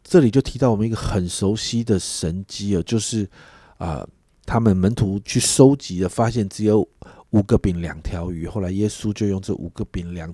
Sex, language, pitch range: male, Chinese, 95-130 Hz